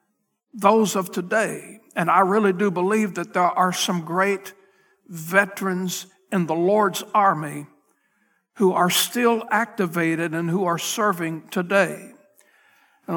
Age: 60-79